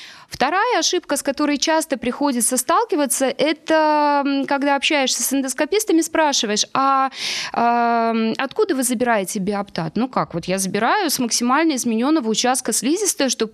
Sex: female